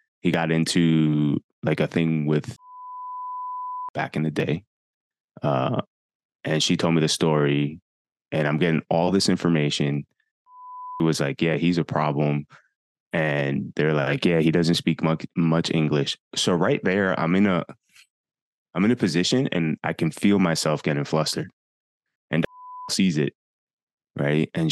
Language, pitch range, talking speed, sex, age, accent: English, 75-90 Hz, 155 wpm, male, 20-39, American